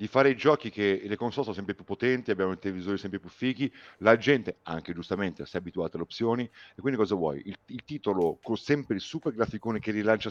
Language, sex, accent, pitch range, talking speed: Italian, male, native, 95-120 Hz, 235 wpm